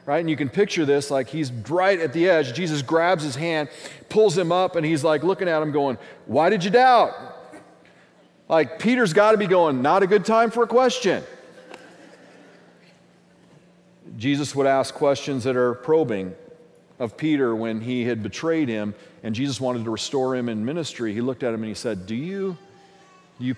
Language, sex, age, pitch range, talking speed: English, male, 40-59, 140-180 Hz, 190 wpm